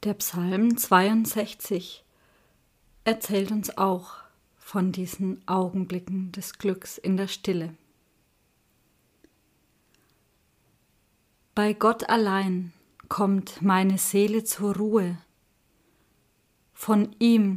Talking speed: 80 wpm